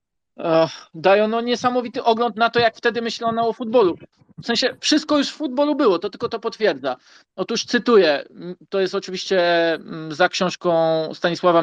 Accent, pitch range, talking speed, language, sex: native, 170-210 Hz, 150 wpm, Polish, male